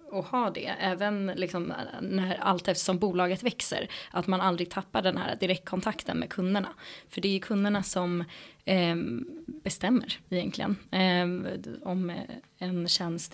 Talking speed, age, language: 145 wpm, 20-39, Swedish